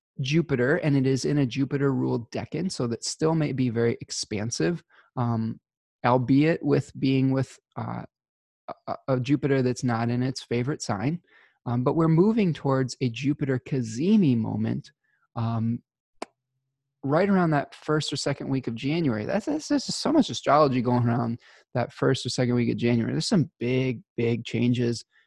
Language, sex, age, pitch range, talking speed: English, male, 20-39, 115-140 Hz, 160 wpm